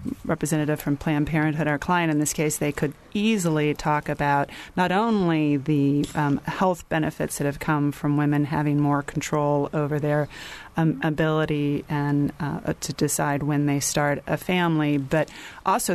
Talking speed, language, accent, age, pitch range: 160 wpm, English, American, 30-49, 150-160 Hz